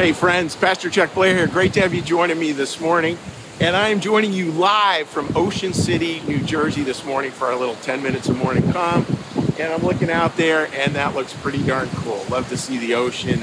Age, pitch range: 50-69, 130-170 Hz